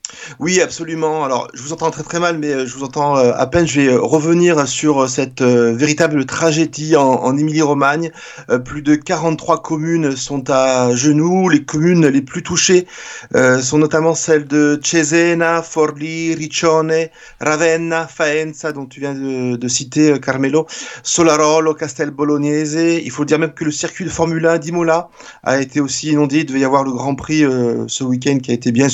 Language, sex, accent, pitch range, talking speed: French, male, French, 145-170 Hz, 180 wpm